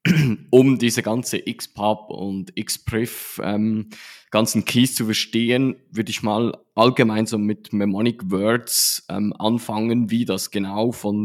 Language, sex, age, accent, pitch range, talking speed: German, male, 20-39, Swiss, 105-125 Hz, 135 wpm